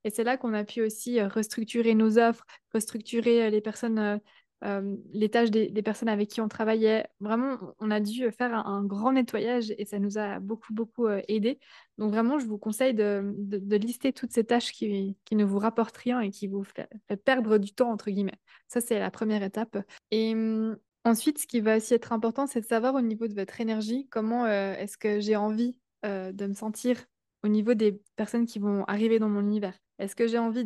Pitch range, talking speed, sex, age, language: 210-240 Hz, 225 wpm, female, 20-39, French